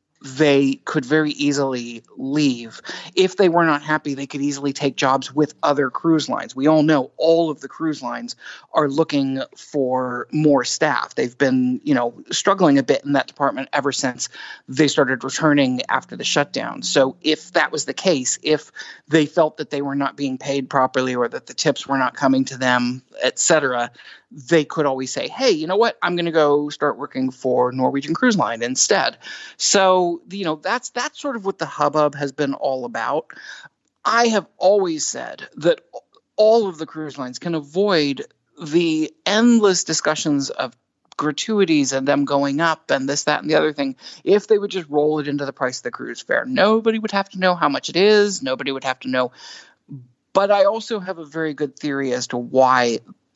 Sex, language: male, English